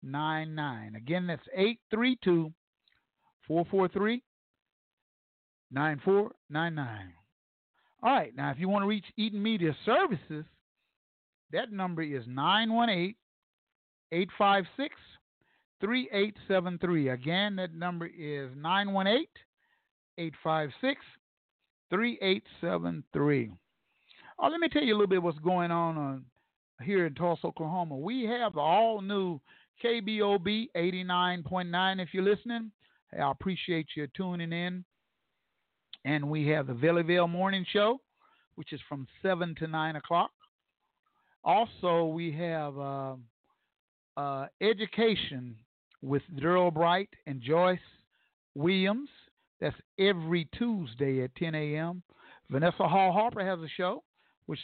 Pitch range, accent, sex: 155-200 Hz, American, male